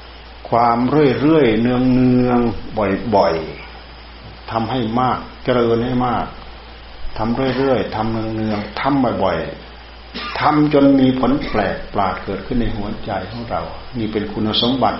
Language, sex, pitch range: Thai, male, 70-120 Hz